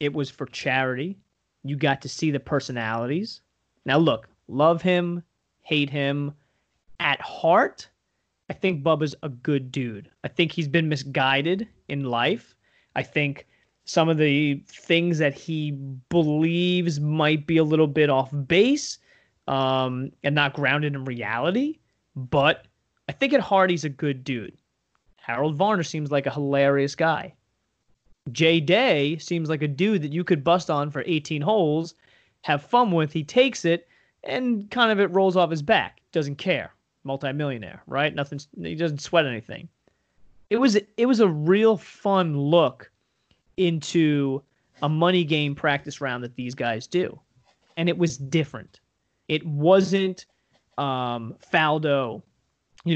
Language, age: English, 20-39